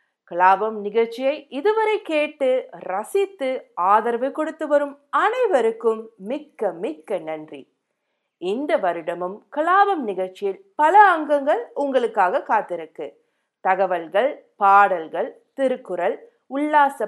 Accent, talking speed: native, 85 wpm